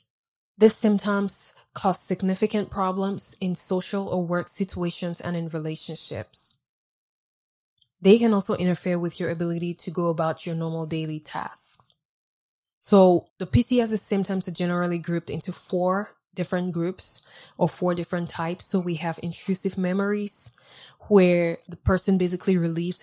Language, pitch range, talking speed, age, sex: English, 170-190 Hz, 135 wpm, 20-39, female